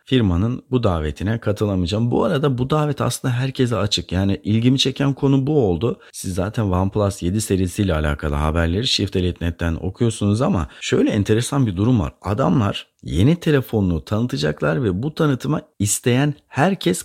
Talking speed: 145 wpm